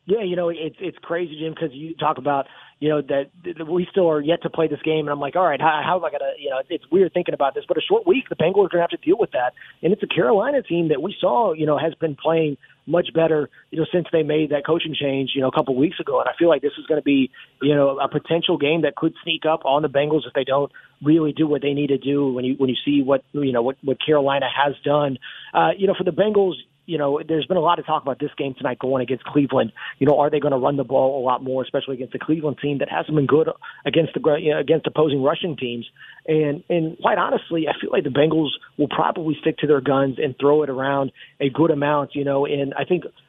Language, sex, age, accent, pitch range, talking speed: English, male, 30-49, American, 135-160 Hz, 285 wpm